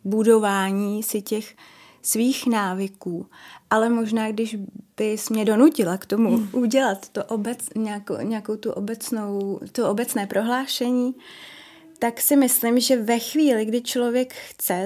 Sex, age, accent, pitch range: female, 20-39, native, 205-235 Hz